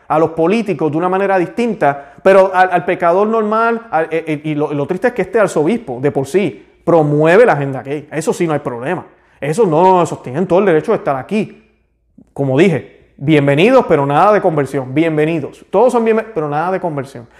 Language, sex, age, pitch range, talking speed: Spanish, male, 30-49, 140-185 Hz, 195 wpm